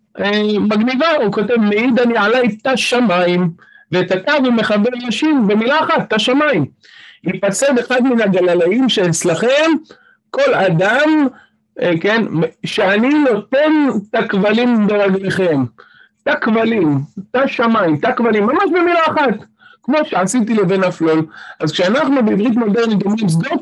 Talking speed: 125 wpm